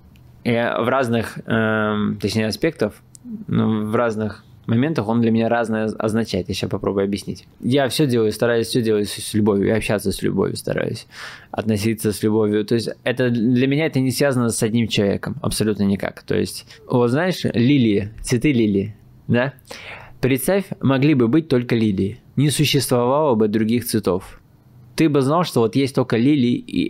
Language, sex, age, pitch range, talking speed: Russian, male, 20-39, 110-130 Hz, 170 wpm